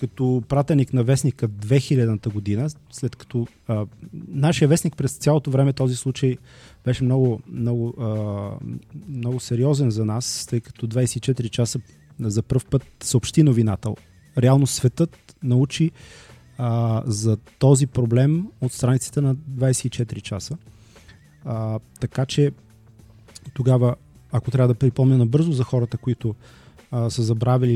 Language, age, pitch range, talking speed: Bulgarian, 30-49, 115-130 Hz, 130 wpm